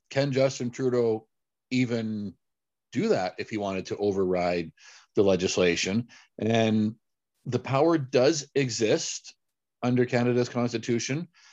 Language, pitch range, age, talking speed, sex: English, 100-125 Hz, 50-69, 110 wpm, male